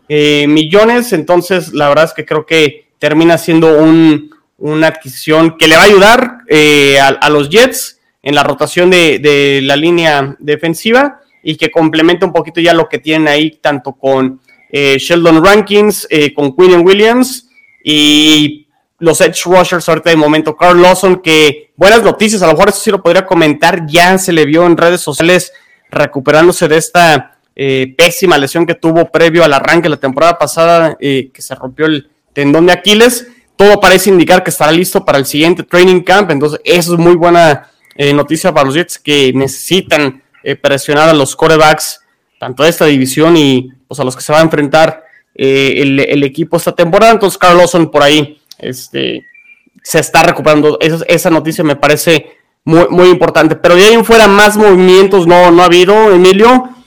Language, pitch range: Spanish, 150-180 Hz